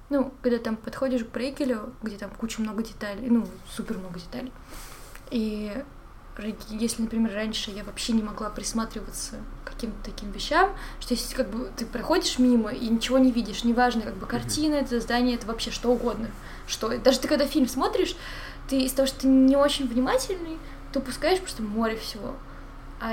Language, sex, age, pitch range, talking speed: Russian, female, 20-39, 230-280 Hz, 180 wpm